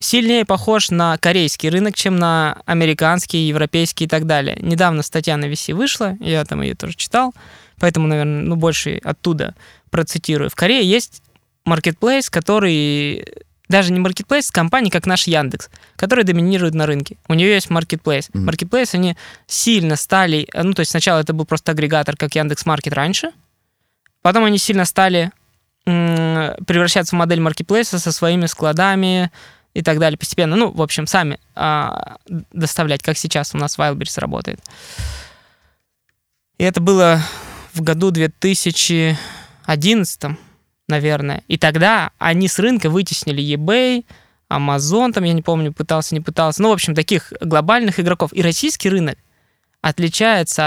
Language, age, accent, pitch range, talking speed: Russian, 20-39, native, 155-195 Hz, 145 wpm